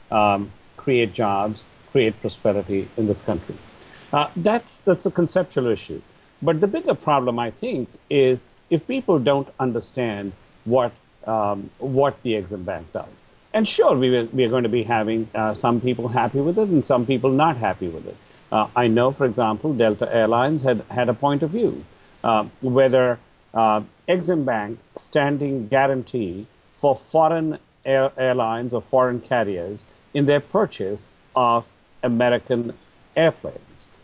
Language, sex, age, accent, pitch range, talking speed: English, male, 50-69, Indian, 115-155 Hz, 150 wpm